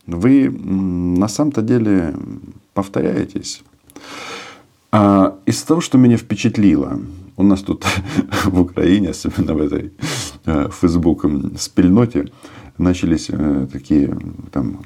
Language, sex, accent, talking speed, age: Russian, male, native, 90 wpm, 50-69